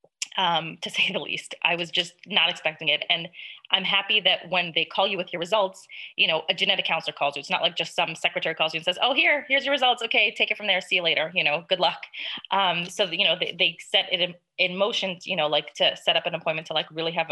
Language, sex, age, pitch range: English, female, 20-39, 160-190 Hz